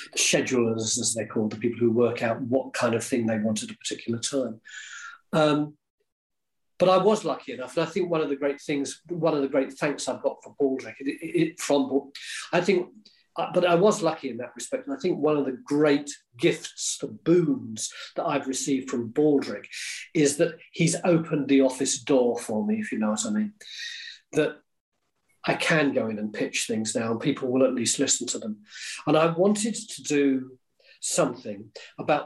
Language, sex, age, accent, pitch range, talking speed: English, male, 40-59, British, 130-175 Hz, 195 wpm